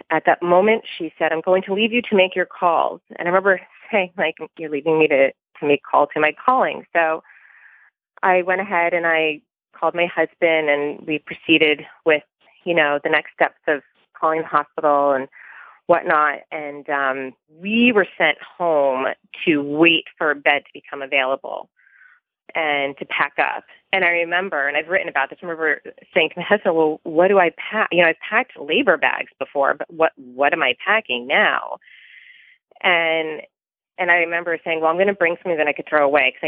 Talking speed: 200 wpm